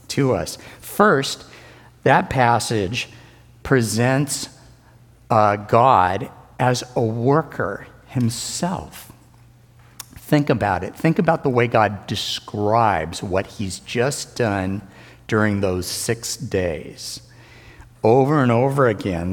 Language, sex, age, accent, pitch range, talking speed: English, male, 60-79, American, 100-125 Hz, 100 wpm